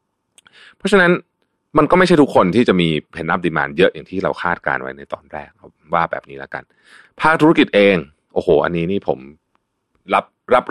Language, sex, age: Thai, male, 30-49